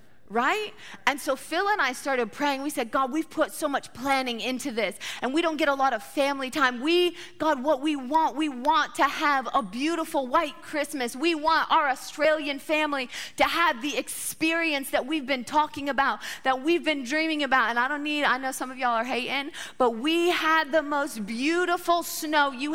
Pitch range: 275-320 Hz